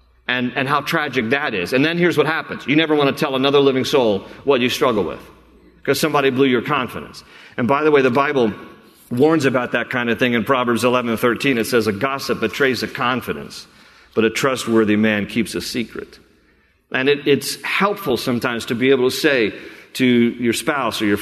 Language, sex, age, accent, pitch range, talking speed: English, male, 40-59, American, 125-155 Hz, 210 wpm